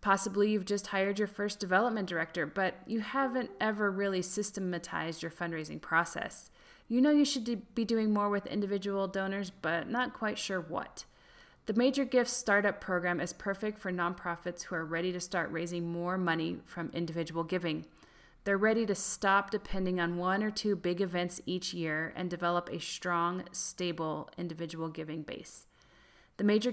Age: 30-49